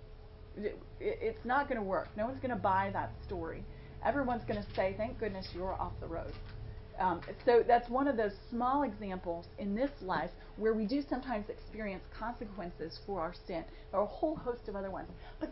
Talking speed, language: 185 wpm, English